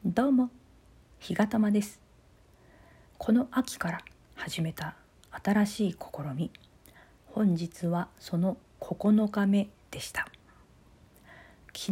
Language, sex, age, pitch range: Japanese, female, 40-59, 160-205 Hz